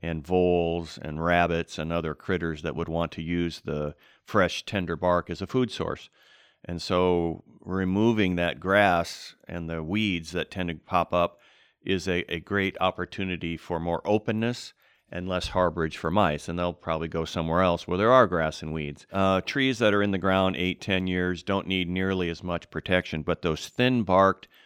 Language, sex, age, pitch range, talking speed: English, male, 40-59, 85-95 Hz, 190 wpm